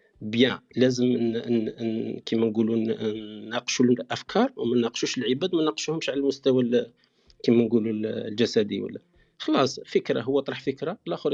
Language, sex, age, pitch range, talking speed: Arabic, male, 40-59, 115-185 Hz, 115 wpm